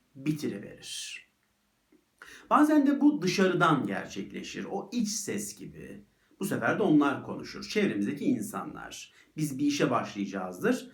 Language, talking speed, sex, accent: Turkish, 115 wpm, male, native